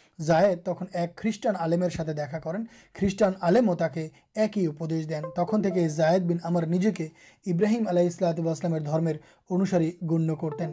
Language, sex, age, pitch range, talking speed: Urdu, male, 30-49, 170-200 Hz, 95 wpm